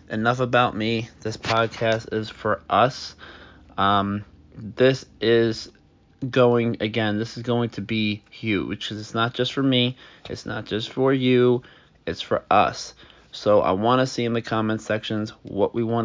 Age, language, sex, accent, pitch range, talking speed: 20-39, English, male, American, 105-120 Hz, 170 wpm